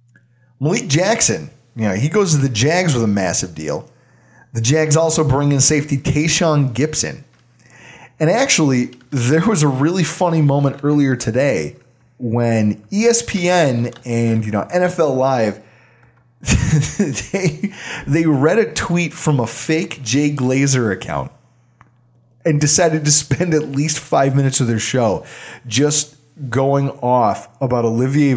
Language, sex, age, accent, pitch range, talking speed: English, male, 30-49, American, 120-150 Hz, 135 wpm